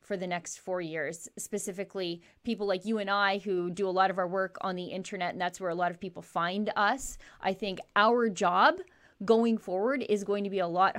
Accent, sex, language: American, female, English